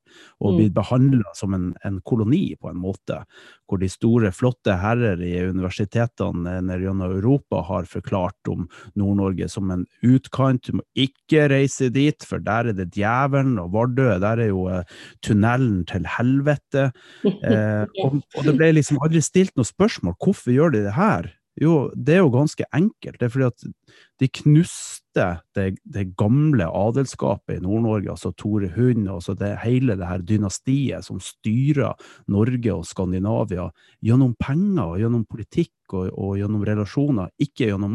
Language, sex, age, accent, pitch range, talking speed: English, male, 30-49, Norwegian, 100-140 Hz, 165 wpm